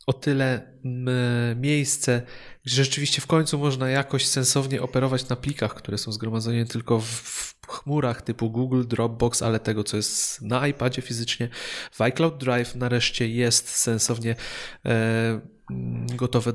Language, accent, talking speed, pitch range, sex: Polish, native, 130 wpm, 115-135 Hz, male